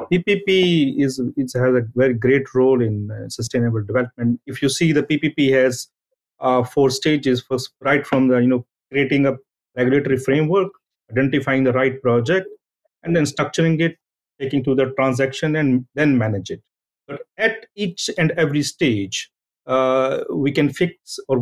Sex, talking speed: male, 165 wpm